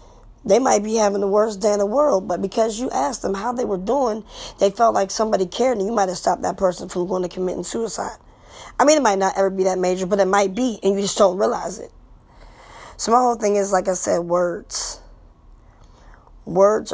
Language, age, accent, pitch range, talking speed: English, 20-39, American, 180-200 Hz, 230 wpm